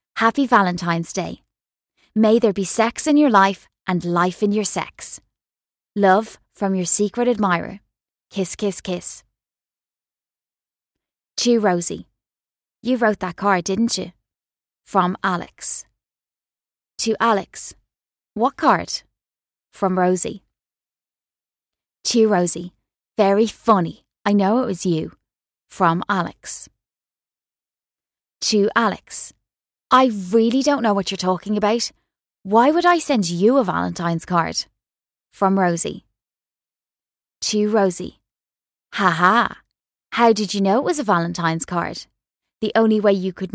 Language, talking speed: English, 120 wpm